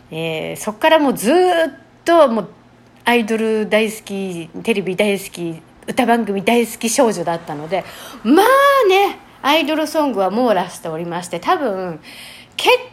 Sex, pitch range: female, 185-305 Hz